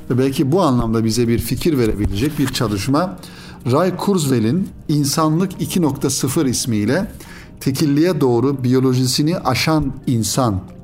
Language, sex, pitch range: Turkish, male, 115-155 Hz